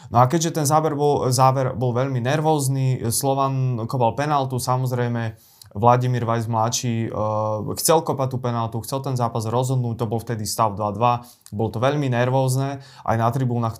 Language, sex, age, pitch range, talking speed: Slovak, male, 20-39, 115-130 Hz, 160 wpm